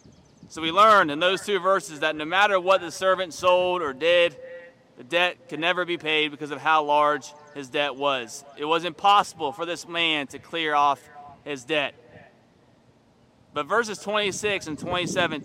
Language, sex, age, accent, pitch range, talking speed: English, male, 30-49, American, 145-185 Hz, 175 wpm